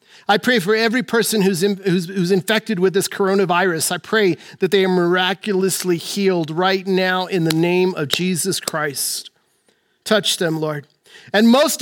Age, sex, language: 50-69, male, English